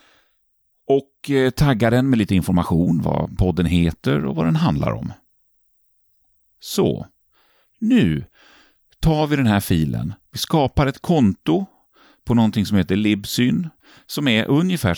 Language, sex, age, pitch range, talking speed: Swedish, male, 40-59, 90-155 Hz, 130 wpm